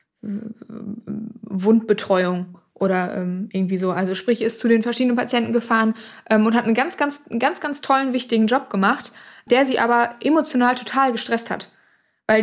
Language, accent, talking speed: German, German, 160 wpm